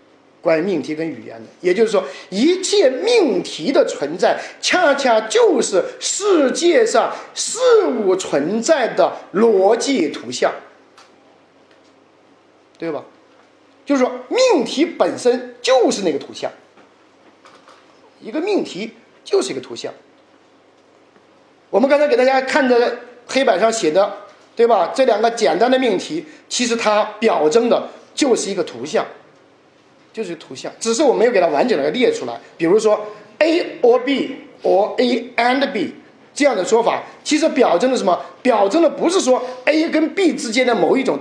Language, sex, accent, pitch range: Chinese, male, native, 230-335 Hz